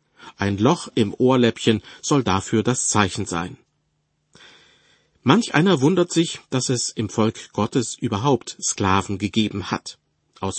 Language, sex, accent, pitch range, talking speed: German, male, German, 105-130 Hz, 130 wpm